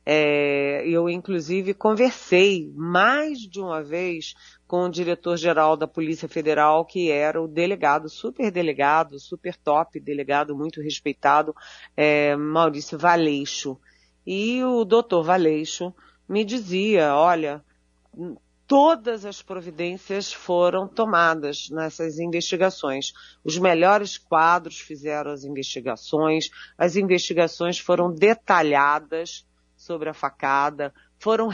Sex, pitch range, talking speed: female, 155-205 Hz, 110 wpm